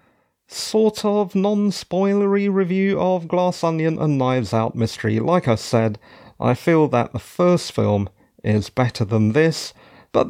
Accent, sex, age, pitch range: British, male, 40-59, 130-180 Hz